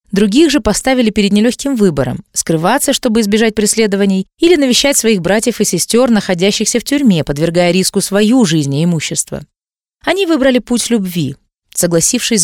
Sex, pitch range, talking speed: female, 190-245 Hz, 145 wpm